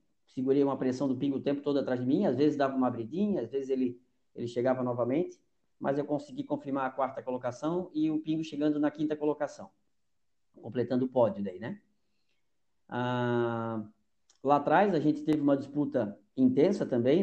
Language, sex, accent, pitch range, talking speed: Portuguese, male, Brazilian, 120-150 Hz, 180 wpm